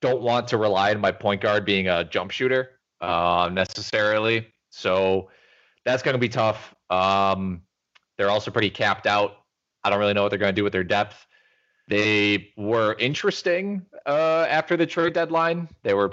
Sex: male